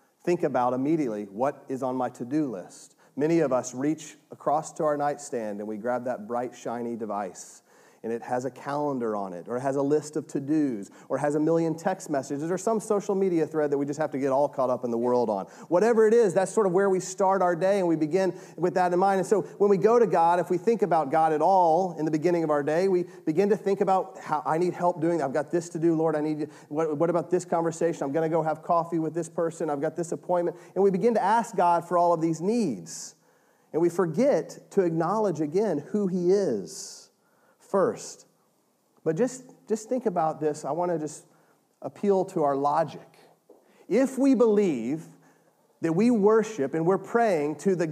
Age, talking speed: 40-59, 230 wpm